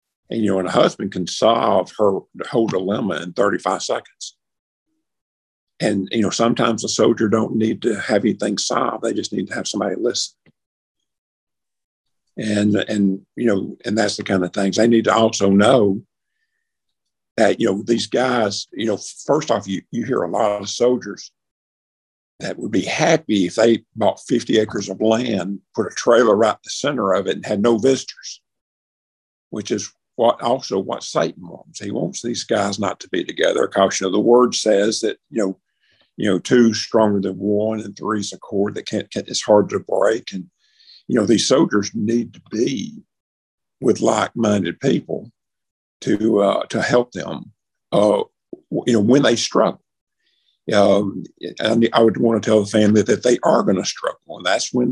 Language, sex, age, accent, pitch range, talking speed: English, male, 50-69, American, 100-120 Hz, 185 wpm